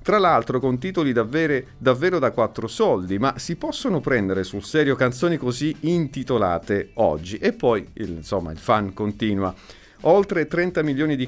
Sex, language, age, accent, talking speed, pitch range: male, Italian, 50-69, native, 155 wpm, 105-155 Hz